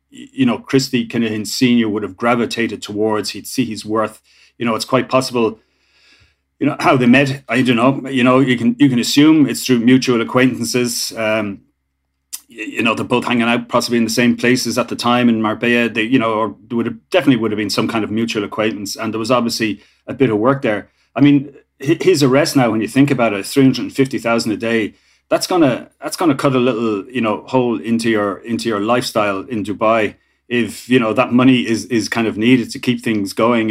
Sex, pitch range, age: male, 110-125 Hz, 30-49